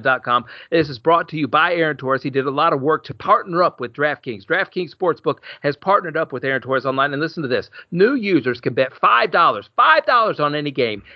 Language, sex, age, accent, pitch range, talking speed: English, male, 40-59, American, 130-160 Hz, 235 wpm